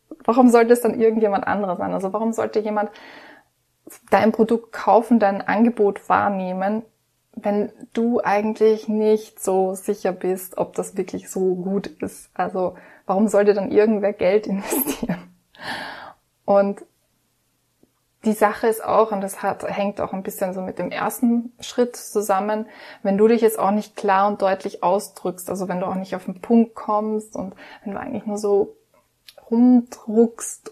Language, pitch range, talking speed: German, 200-225 Hz, 160 wpm